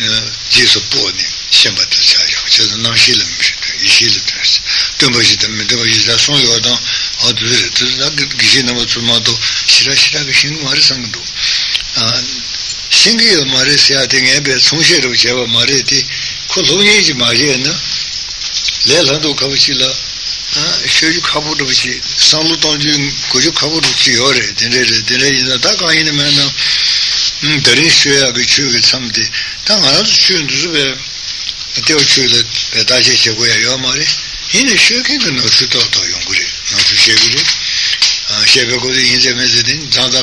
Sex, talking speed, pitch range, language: male, 80 wpm, 120-145 Hz, Italian